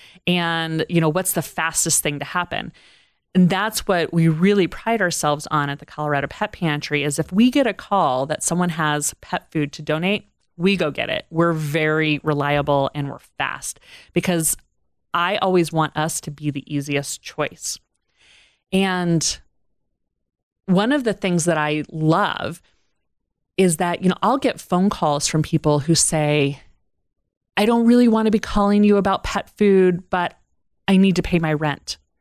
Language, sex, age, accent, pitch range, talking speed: English, female, 30-49, American, 150-185 Hz, 175 wpm